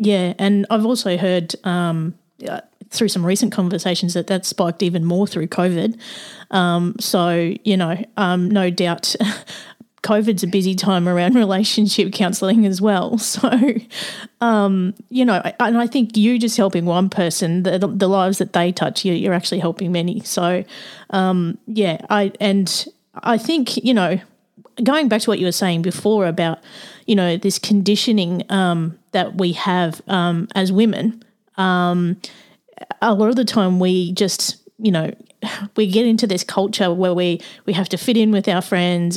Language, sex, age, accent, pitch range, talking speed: English, female, 30-49, Australian, 180-215 Hz, 170 wpm